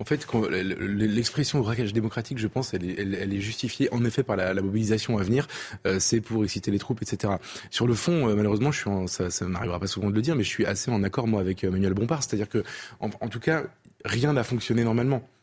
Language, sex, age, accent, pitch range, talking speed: French, male, 20-39, French, 100-125 Hz, 220 wpm